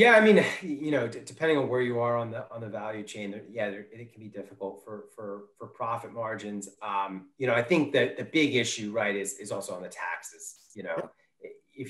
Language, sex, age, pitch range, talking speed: English, male, 30-49, 100-135 Hz, 240 wpm